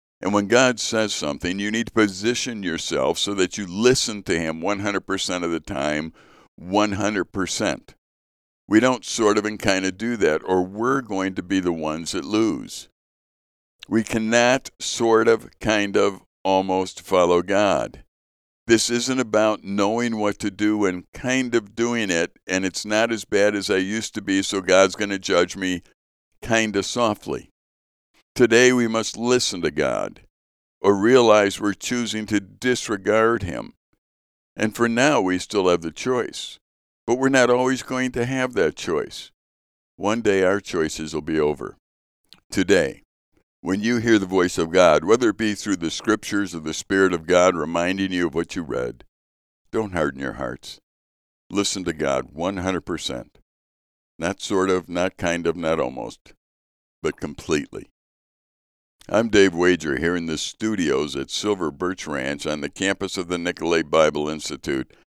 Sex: male